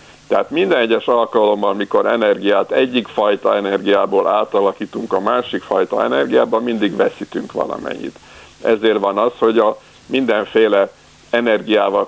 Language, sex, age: Hungarian, male, 50-69